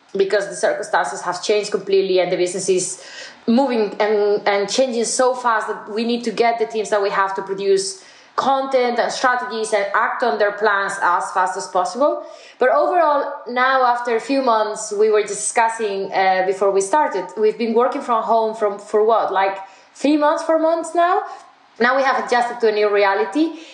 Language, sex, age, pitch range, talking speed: English, female, 20-39, 200-255 Hz, 190 wpm